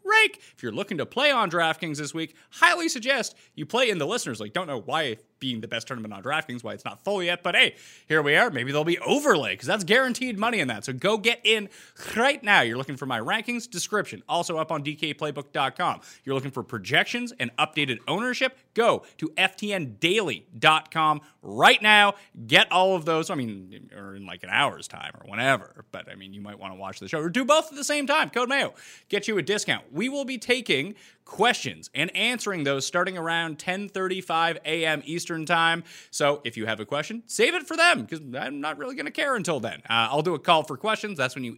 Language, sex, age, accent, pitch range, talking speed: English, male, 30-49, American, 135-220 Hz, 225 wpm